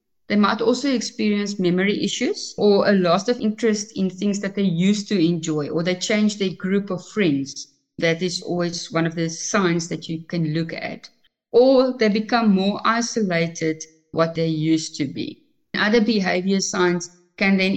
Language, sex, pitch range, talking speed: English, female, 180-215 Hz, 175 wpm